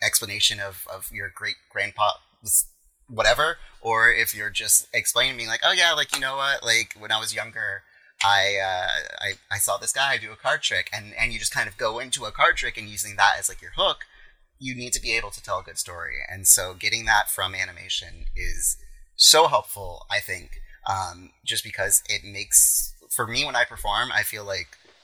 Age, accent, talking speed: 30-49, American, 210 wpm